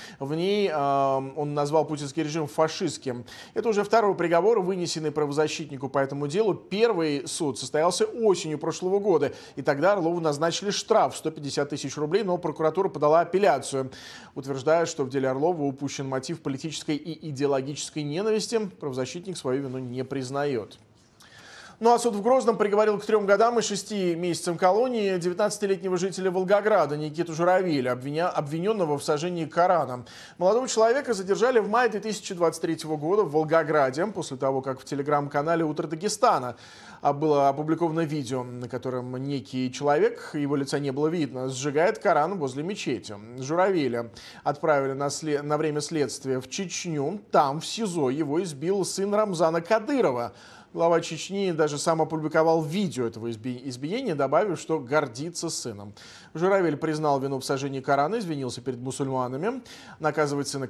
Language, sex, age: Russian, male, 20-39